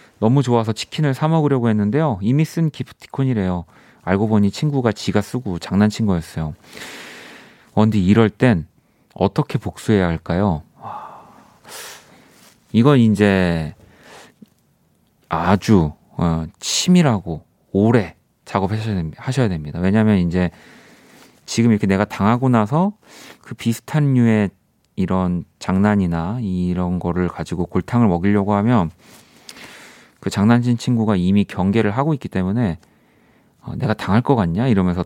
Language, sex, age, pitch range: Korean, male, 30-49, 90-120 Hz